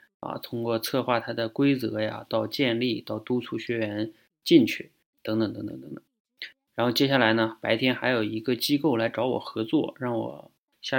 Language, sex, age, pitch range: Chinese, male, 20-39, 110-135 Hz